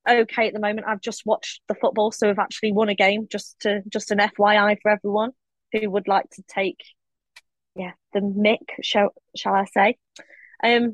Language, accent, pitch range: English, British, 195-230 Hz